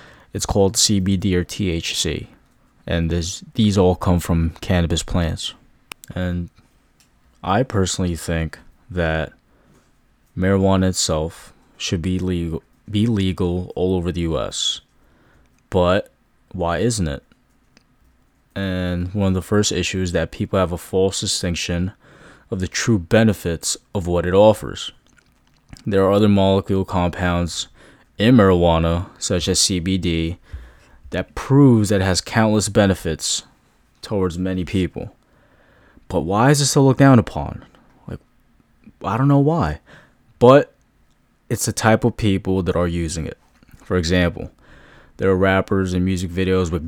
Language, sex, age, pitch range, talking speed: English, male, 20-39, 90-100 Hz, 135 wpm